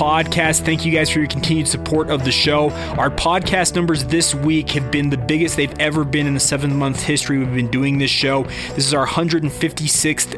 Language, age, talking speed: English, 30-49, 215 wpm